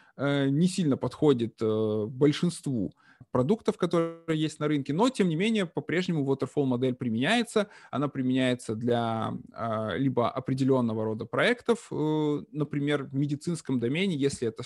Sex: male